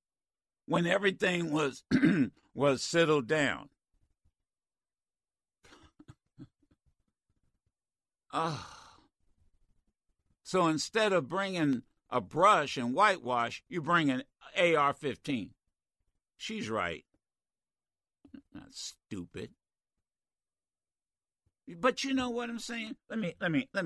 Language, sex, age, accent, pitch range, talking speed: English, male, 60-79, American, 130-220 Hz, 85 wpm